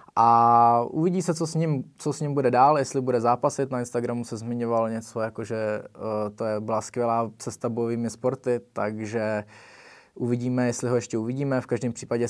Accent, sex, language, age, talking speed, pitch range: native, male, Czech, 20-39, 180 wpm, 115-130 Hz